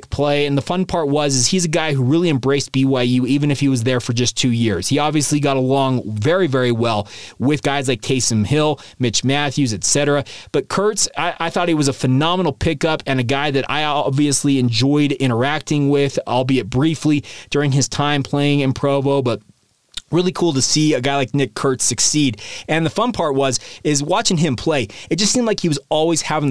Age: 20-39